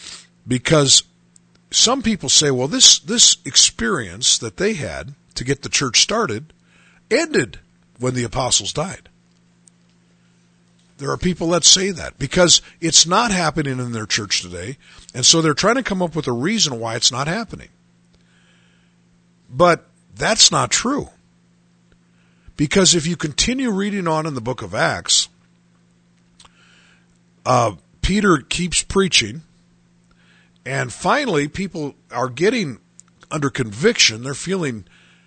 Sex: male